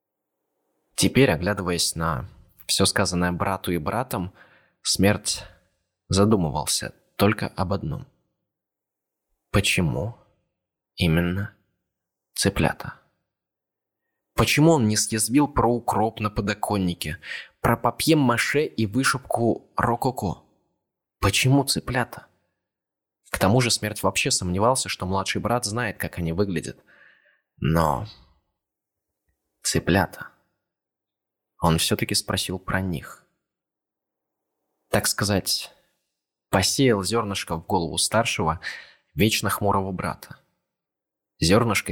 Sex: male